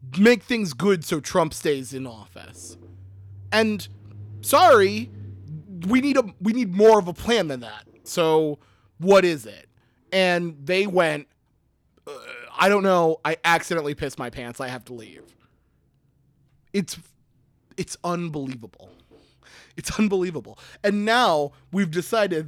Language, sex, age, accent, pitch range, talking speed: English, male, 30-49, American, 130-205 Hz, 130 wpm